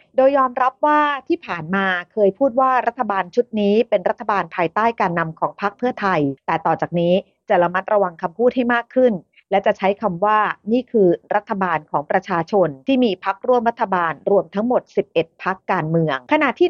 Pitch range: 185-240 Hz